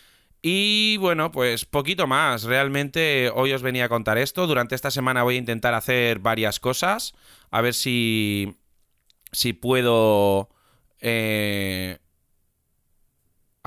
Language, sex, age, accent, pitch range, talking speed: Spanish, male, 20-39, Spanish, 105-130 Hz, 120 wpm